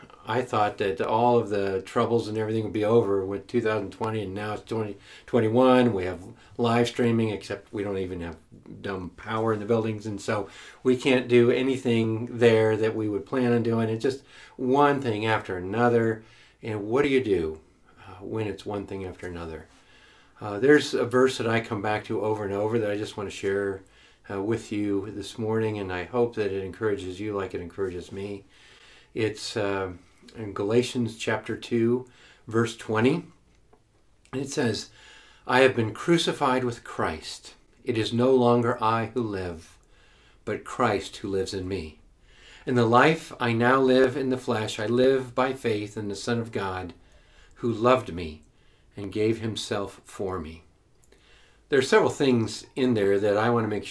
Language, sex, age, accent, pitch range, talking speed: English, male, 50-69, American, 100-120 Hz, 180 wpm